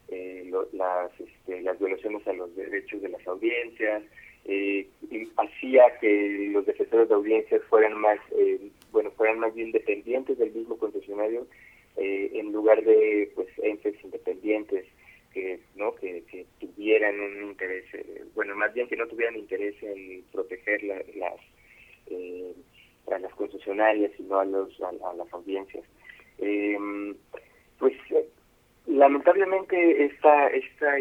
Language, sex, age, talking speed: Spanish, male, 30-49, 135 wpm